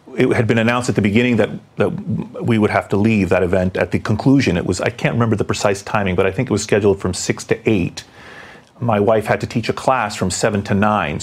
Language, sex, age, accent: English, male, 30-49, American